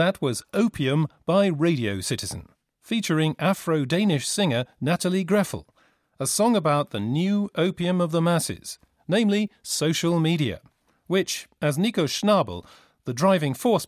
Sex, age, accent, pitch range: male, 40-59, British, 135-190 Hz